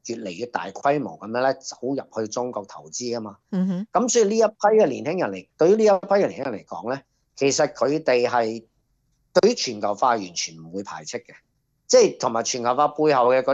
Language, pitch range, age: Chinese, 115-150 Hz, 40-59